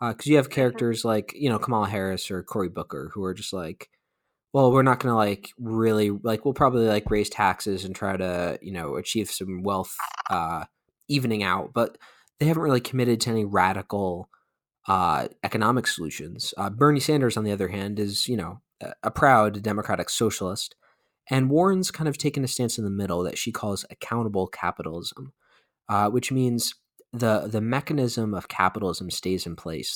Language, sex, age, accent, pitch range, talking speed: English, male, 20-39, American, 100-120 Hz, 190 wpm